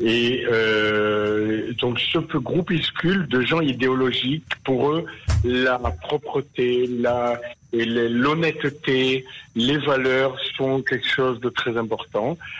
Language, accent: French, French